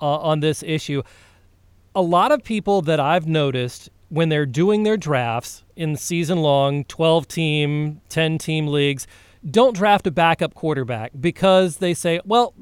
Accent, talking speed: American, 155 wpm